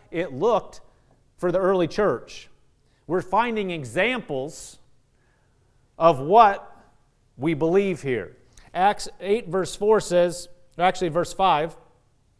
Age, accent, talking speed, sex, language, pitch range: 40-59, American, 105 wpm, male, English, 155-215 Hz